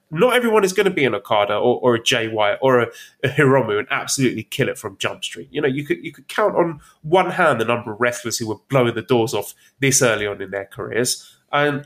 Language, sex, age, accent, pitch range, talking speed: English, male, 20-39, British, 125-180 Hz, 260 wpm